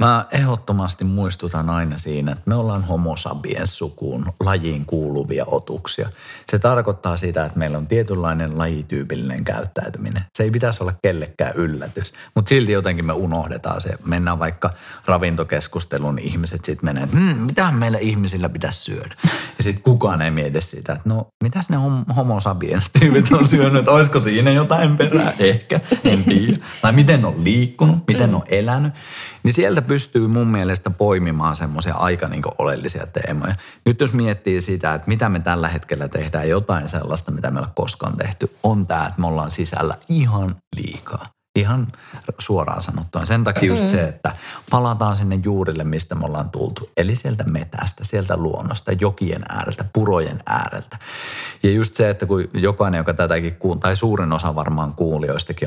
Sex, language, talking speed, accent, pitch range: male, Finnish, 160 wpm, native, 80-115 Hz